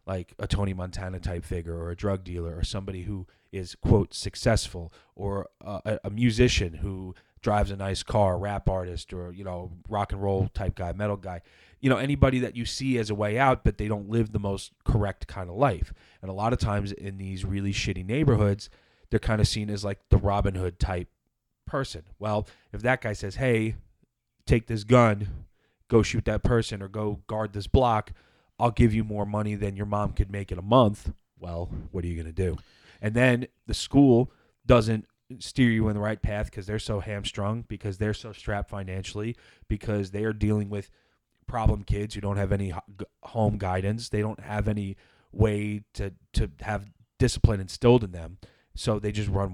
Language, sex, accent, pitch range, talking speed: English, male, American, 95-110 Hz, 200 wpm